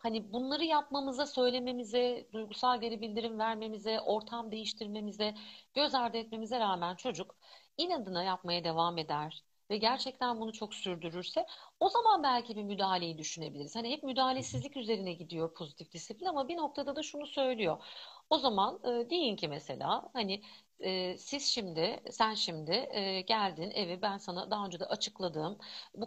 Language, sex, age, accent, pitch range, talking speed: Turkish, female, 50-69, native, 185-250 Hz, 145 wpm